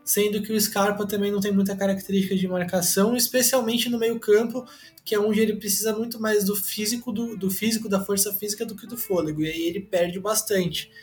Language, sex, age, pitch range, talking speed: Portuguese, male, 20-39, 185-230 Hz, 210 wpm